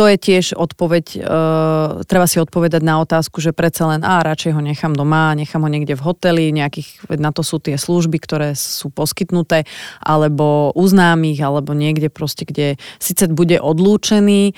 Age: 30-49